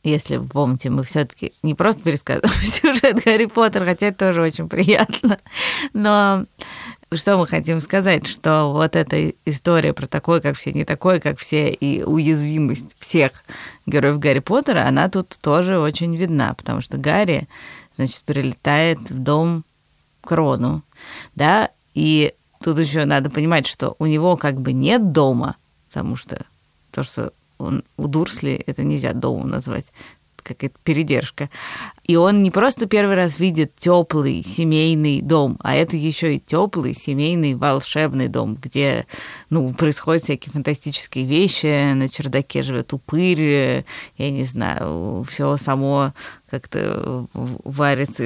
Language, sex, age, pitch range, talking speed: Russian, female, 20-39, 140-170 Hz, 140 wpm